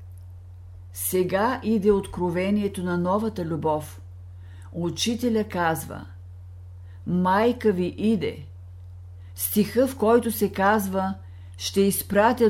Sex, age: female, 50-69